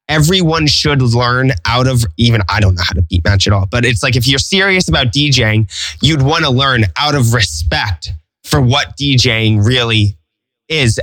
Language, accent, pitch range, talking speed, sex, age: English, American, 105-145 Hz, 190 wpm, male, 20-39